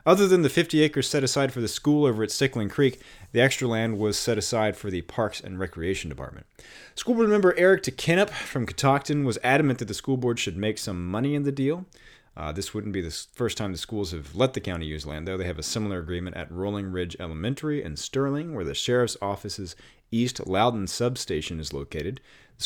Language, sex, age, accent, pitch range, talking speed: English, male, 30-49, American, 100-140 Hz, 220 wpm